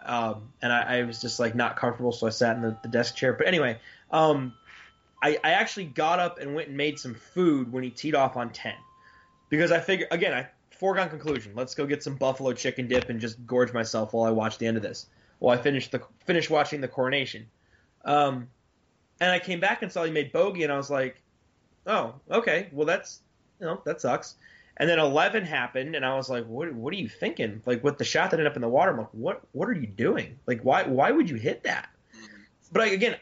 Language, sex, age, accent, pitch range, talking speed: English, male, 20-39, American, 120-165 Hz, 240 wpm